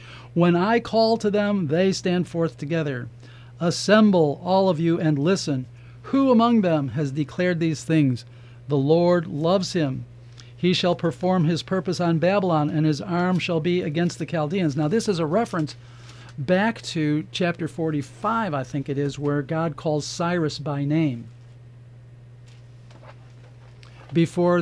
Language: English